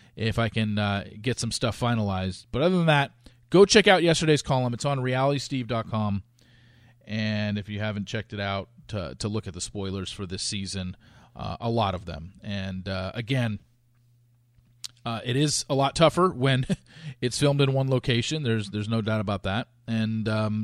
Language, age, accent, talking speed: English, 40-59, American, 185 wpm